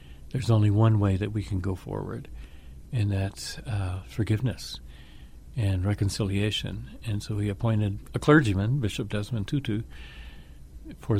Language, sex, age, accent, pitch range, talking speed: English, male, 50-69, American, 90-120 Hz, 135 wpm